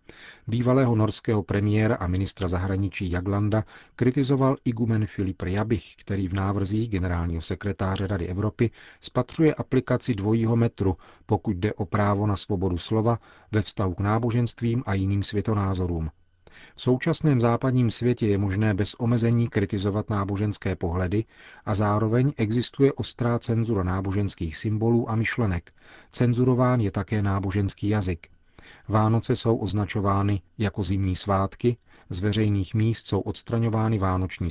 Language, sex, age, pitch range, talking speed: Czech, male, 40-59, 95-115 Hz, 130 wpm